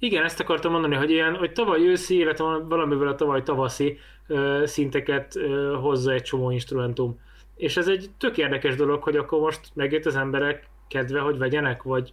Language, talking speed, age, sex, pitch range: Hungarian, 180 wpm, 20-39, male, 135-150 Hz